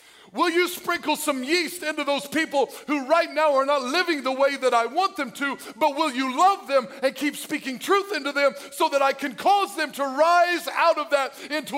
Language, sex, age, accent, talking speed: English, male, 50-69, American, 225 wpm